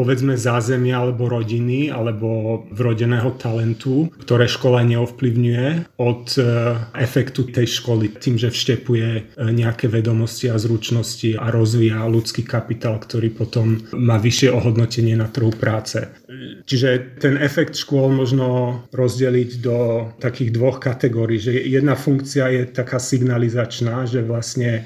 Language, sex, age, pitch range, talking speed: Slovak, male, 30-49, 115-130 Hz, 120 wpm